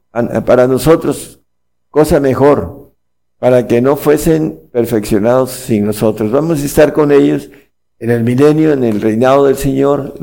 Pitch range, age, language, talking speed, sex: 110-140 Hz, 50-69, Spanish, 145 wpm, male